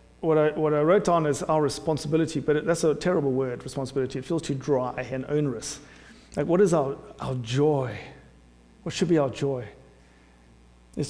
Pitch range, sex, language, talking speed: 130-175 Hz, male, English, 185 wpm